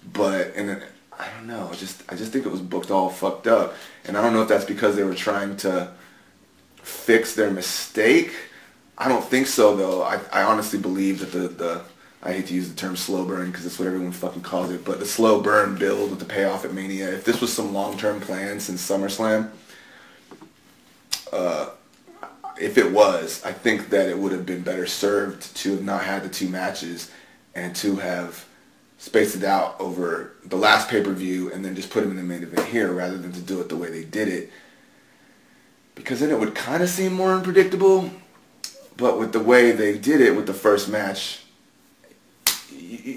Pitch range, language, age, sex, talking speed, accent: 95-140 Hz, English, 30-49, male, 205 wpm, American